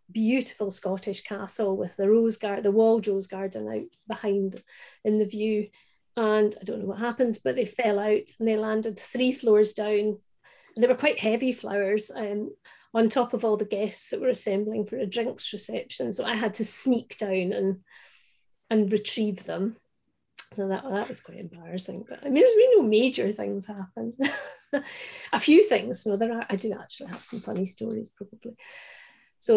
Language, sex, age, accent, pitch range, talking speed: English, female, 40-59, British, 205-240 Hz, 185 wpm